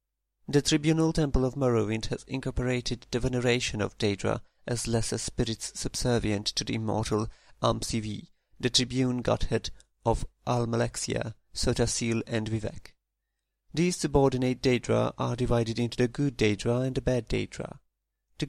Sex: male